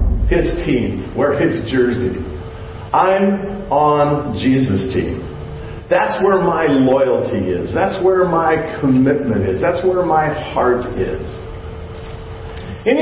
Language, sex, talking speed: English, male, 115 wpm